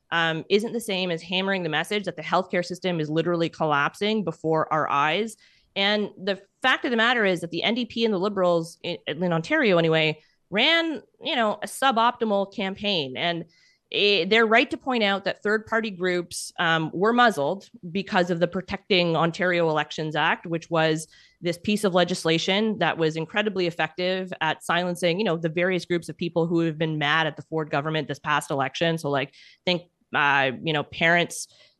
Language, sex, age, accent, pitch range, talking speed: English, female, 30-49, American, 160-195 Hz, 185 wpm